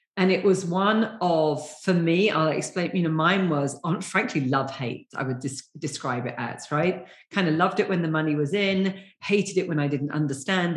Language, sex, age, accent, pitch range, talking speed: English, female, 40-59, British, 145-195 Hz, 200 wpm